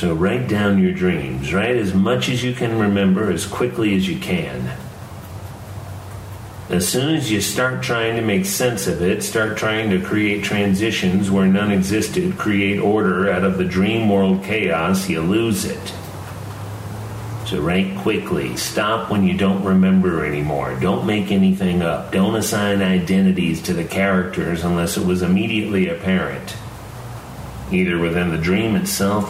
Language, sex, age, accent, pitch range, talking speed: English, male, 40-59, American, 90-110 Hz, 155 wpm